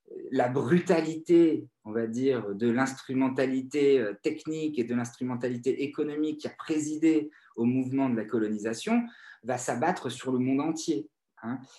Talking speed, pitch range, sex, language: 140 wpm, 110-150 Hz, male, French